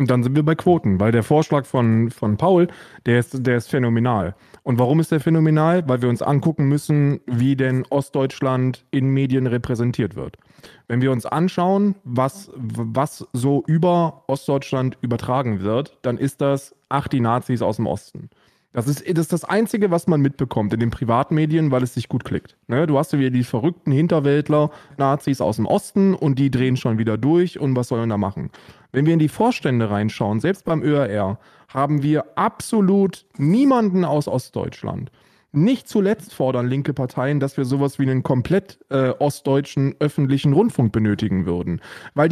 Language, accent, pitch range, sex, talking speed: German, German, 125-160 Hz, male, 175 wpm